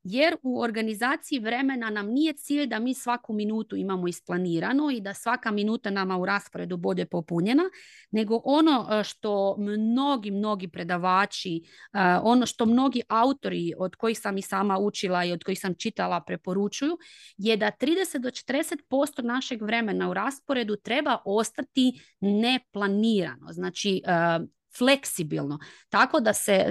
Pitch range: 185-250 Hz